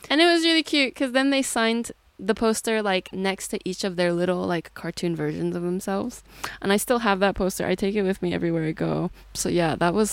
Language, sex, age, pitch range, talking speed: English, female, 20-39, 155-200 Hz, 245 wpm